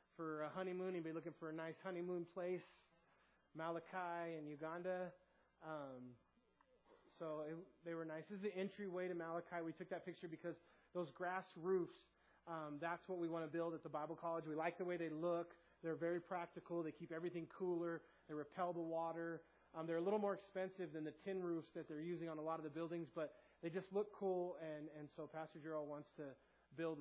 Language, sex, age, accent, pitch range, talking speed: English, male, 30-49, American, 155-175 Hz, 210 wpm